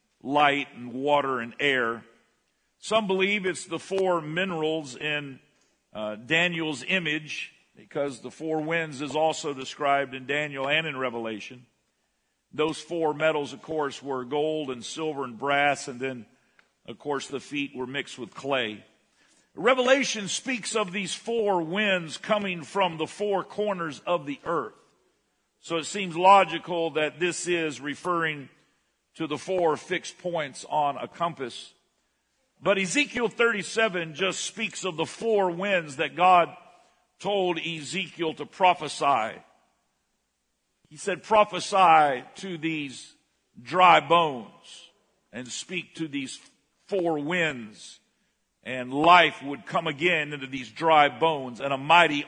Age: 50-69